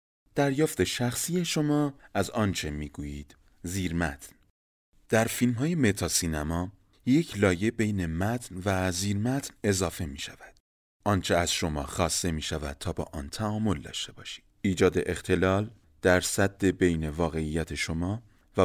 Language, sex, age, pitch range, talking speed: Persian, male, 30-49, 85-120 Hz, 130 wpm